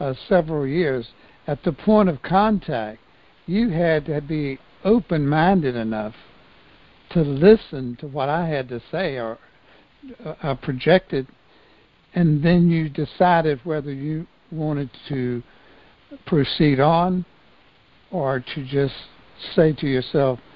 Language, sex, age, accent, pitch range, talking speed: English, male, 60-79, American, 130-170 Hz, 125 wpm